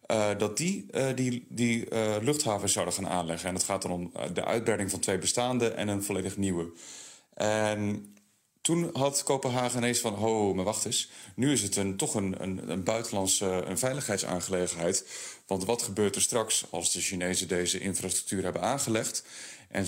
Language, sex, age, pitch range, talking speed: Dutch, male, 30-49, 90-110 Hz, 180 wpm